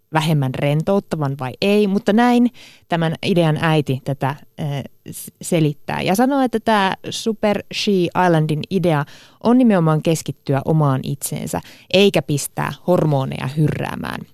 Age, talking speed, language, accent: 30-49, 115 wpm, Finnish, native